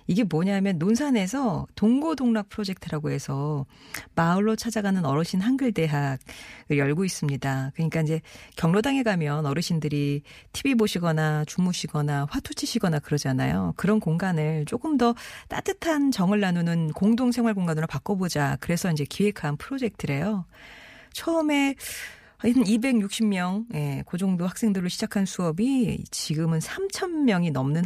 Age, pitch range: 40-59, 150-215 Hz